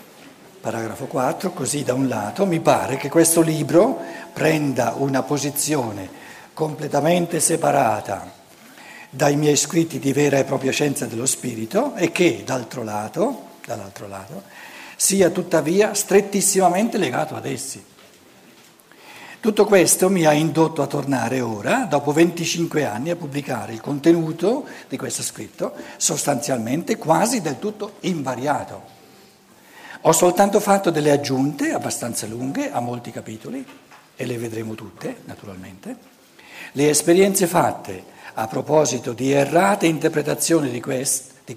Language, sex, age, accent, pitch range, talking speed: Italian, male, 60-79, native, 130-175 Hz, 125 wpm